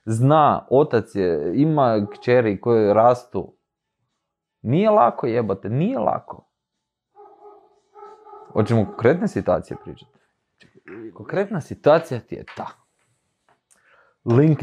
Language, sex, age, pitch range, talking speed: Croatian, male, 20-39, 100-140 Hz, 100 wpm